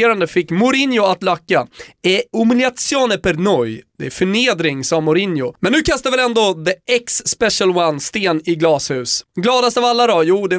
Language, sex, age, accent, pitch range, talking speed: Swedish, male, 20-39, native, 155-220 Hz, 175 wpm